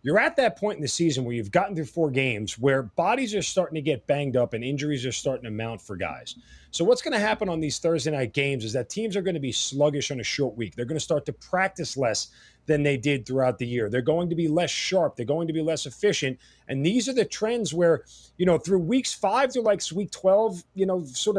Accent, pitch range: American, 140-190 Hz